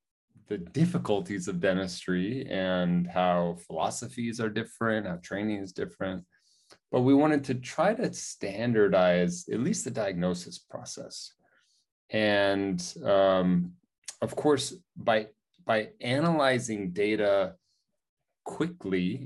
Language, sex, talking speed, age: English, male, 105 wpm, 30-49